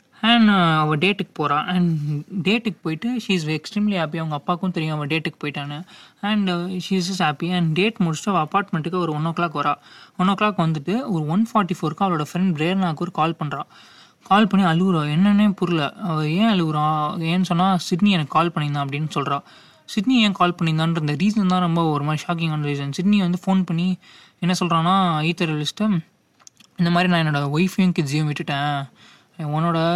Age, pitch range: 20-39, 155-190 Hz